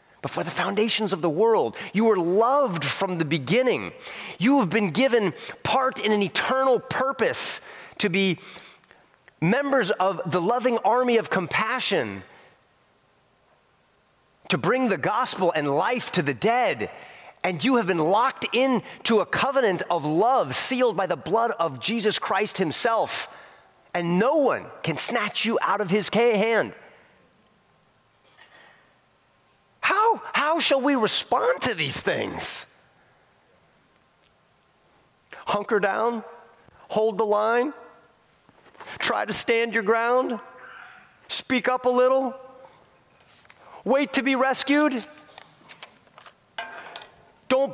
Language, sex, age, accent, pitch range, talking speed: English, male, 30-49, American, 205-260 Hz, 120 wpm